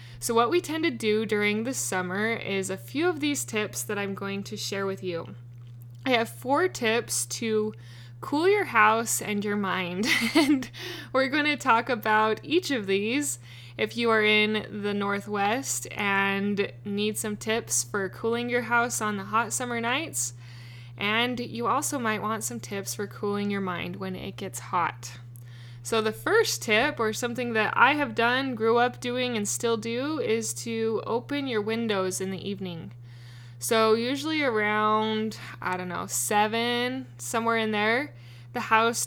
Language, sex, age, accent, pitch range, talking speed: English, female, 20-39, American, 170-230 Hz, 170 wpm